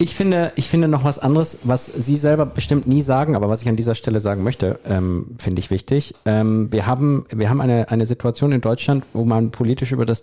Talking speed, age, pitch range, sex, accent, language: 235 wpm, 50-69, 110-135 Hz, male, German, German